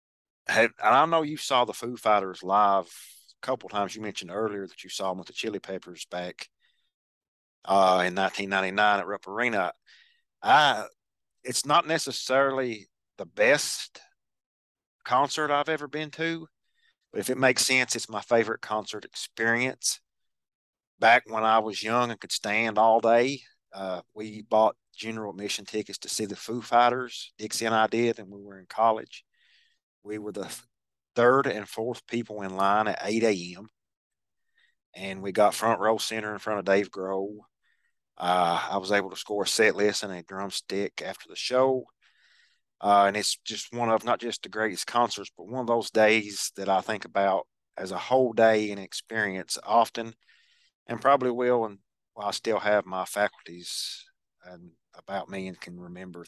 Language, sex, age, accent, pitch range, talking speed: English, male, 40-59, American, 100-120 Hz, 175 wpm